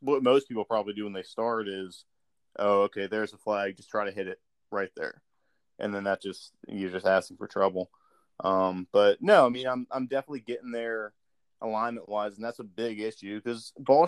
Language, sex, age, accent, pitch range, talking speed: English, male, 20-39, American, 100-125 Hz, 210 wpm